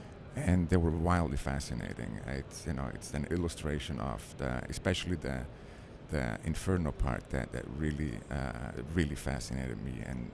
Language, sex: English, male